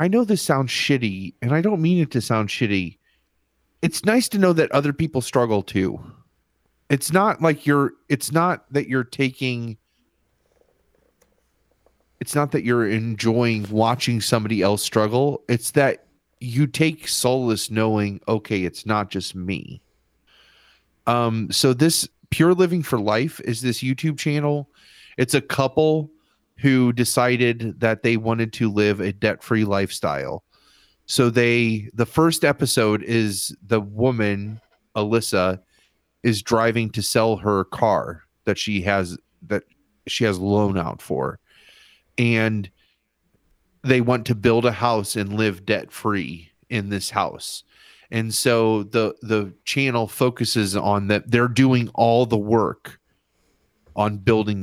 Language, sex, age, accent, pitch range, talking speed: English, male, 30-49, American, 105-130 Hz, 145 wpm